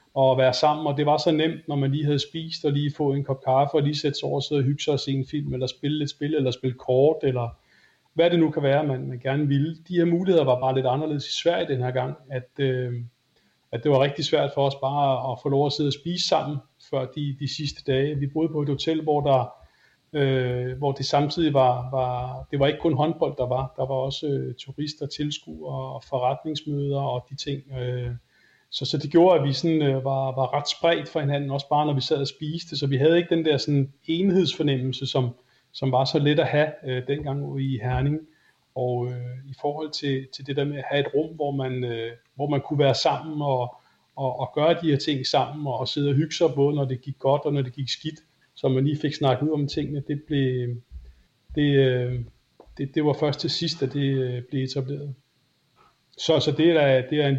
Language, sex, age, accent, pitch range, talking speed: Danish, male, 30-49, native, 130-150 Hz, 240 wpm